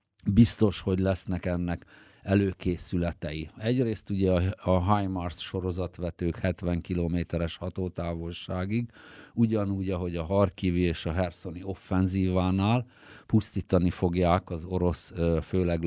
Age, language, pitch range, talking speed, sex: 50-69, Hungarian, 85-100 Hz, 100 wpm, male